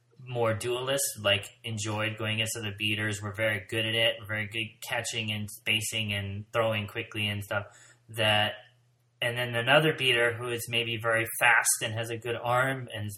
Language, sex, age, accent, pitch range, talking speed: English, male, 30-49, American, 110-125 Hz, 180 wpm